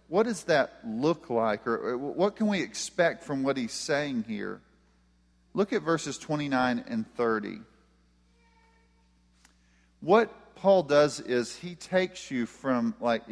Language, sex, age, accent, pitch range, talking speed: English, male, 40-59, American, 120-170 Hz, 135 wpm